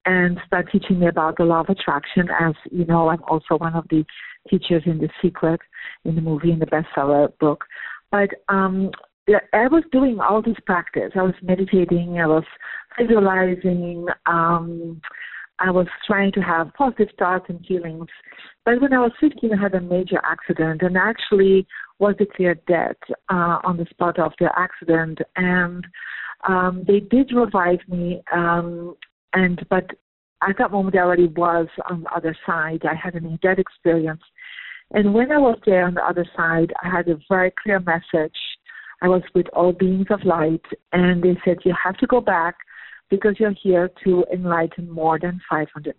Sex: female